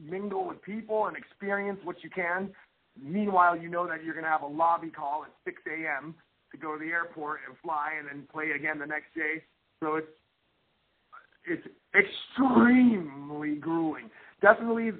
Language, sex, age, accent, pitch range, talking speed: English, male, 40-59, American, 155-190 Hz, 170 wpm